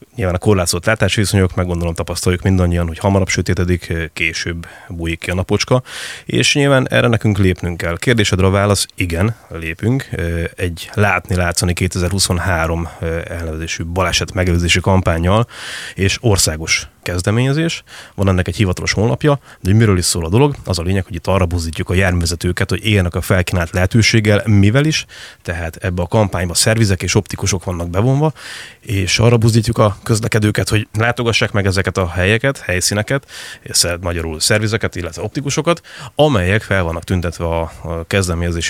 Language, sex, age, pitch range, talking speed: Hungarian, male, 30-49, 85-110 Hz, 150 wpm